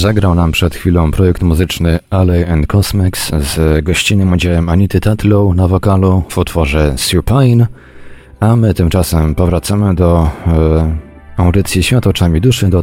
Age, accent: 30-49, native